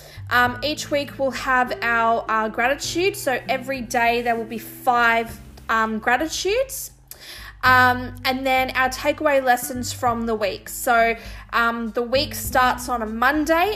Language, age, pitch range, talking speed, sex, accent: English, 20-39, 225-260 Hz, 150 wpm, female, Australian